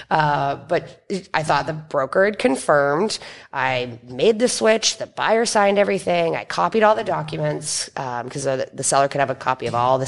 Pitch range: 135-190 Hz